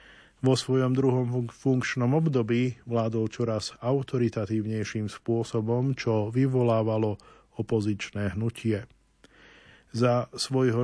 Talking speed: 85 wpm